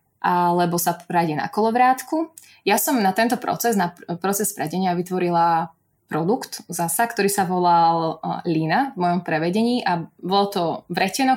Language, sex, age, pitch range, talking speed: Slovak, female, 20-39, 175-210 Hz, 145 wpm